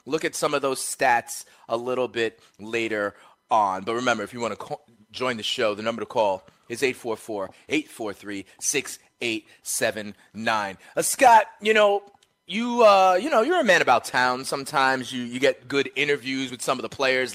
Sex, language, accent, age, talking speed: male, English, American, 30-49, 175 wpm